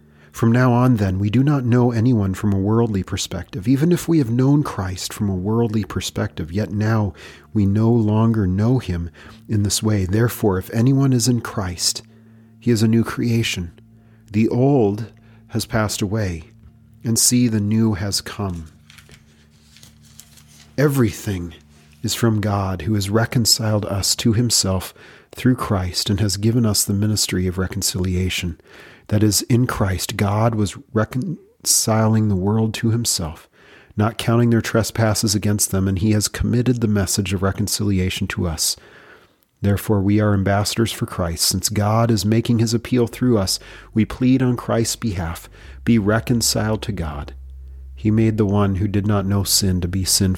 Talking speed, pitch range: 165 wpm, 95-115 Hz